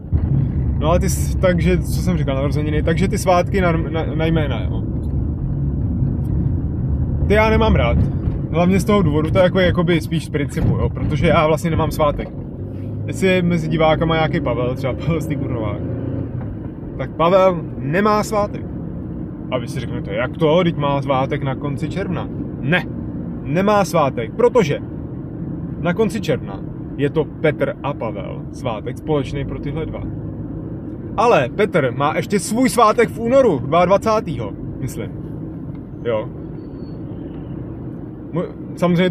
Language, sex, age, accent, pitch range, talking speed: Czech, male, 20-39, native, 135-175 Hz, 135 wpm